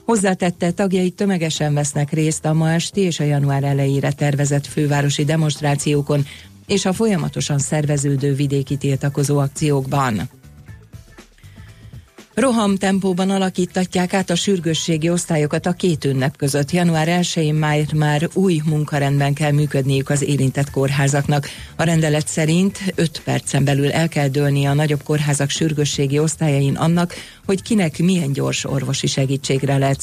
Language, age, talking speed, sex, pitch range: Hungarian, 40-59, 130 wpm, female, 140-175 Hz